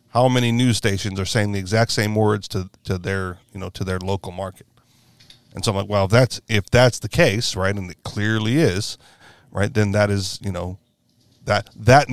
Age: 40-59